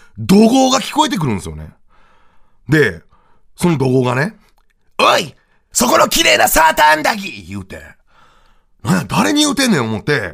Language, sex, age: Japanese, male, 30-49